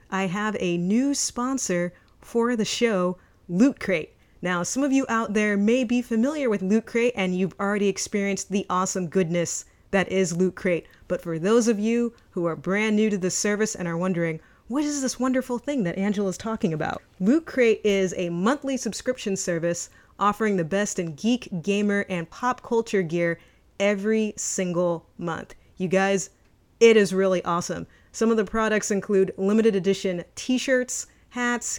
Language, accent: English, American